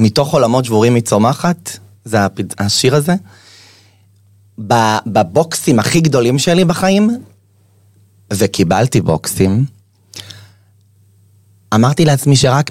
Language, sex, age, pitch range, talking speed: Hebrew, male, 30-49, 100-145 Hz, 80 wpm